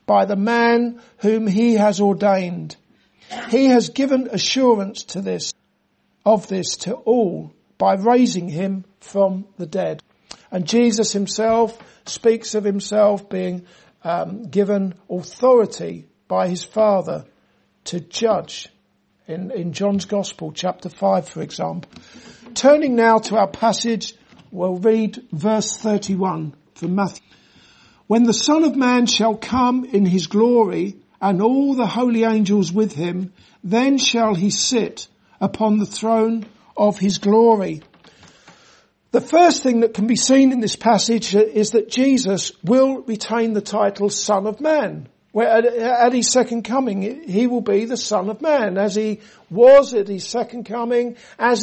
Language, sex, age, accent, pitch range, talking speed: English, male, 60-79, British, 195-235 Hz, 145 wpm